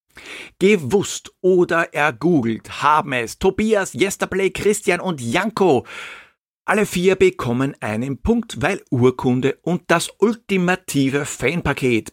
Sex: male